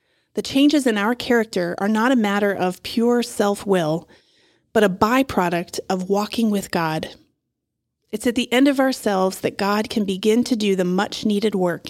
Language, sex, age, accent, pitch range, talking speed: English, female, 30-49, American, 190-230 Hz, 170 wpm